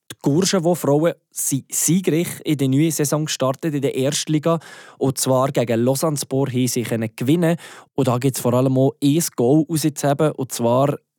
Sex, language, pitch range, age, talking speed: male, German, 125-145 Hz, 20-39, 175 wpm